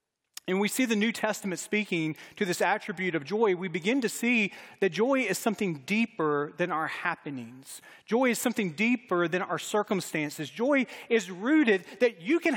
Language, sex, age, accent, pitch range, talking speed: English, male, 40-59, American, 165-220 Hz, 175 wpm